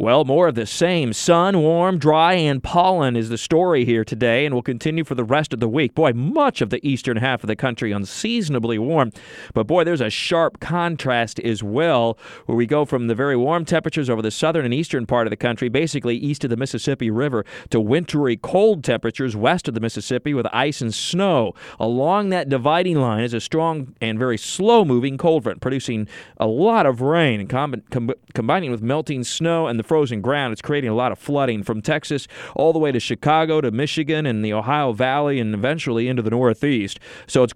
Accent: American